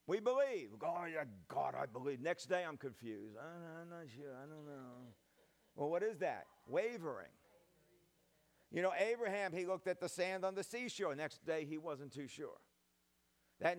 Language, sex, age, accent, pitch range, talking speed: English, male, 50-69, American, 130-180 Hz, 180 wpm